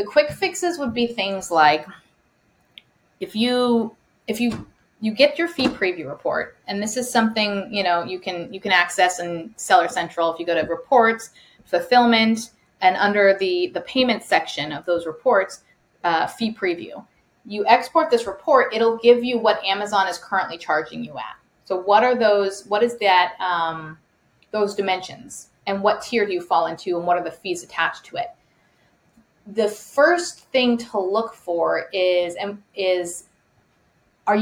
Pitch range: 175-225 Hz